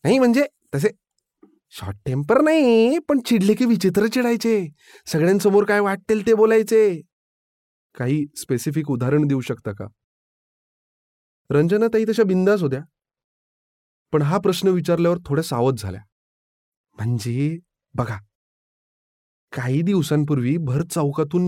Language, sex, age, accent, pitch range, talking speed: Marathi, male, 30-49, native, 135-215 Hz, 110 wpm